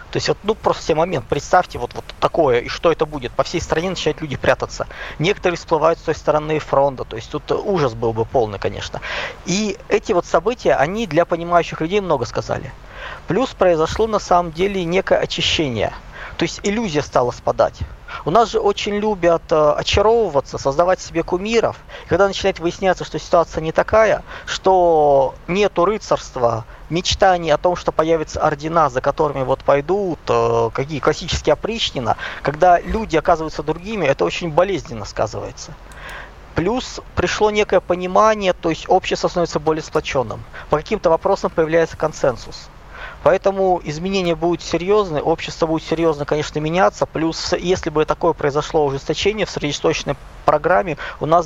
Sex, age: male, 20-39